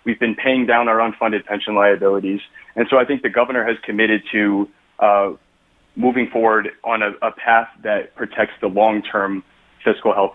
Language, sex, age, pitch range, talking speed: English, male, 30-49, 100-115 Hz, 175 wpm